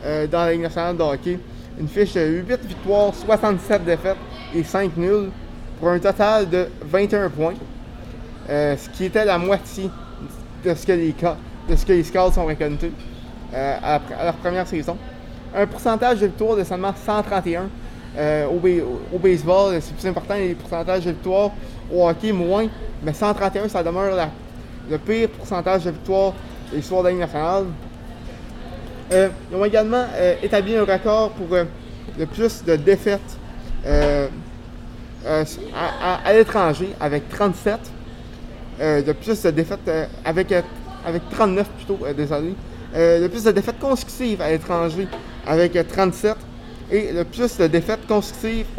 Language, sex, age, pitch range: French, male, 20-39, 165-200 Hz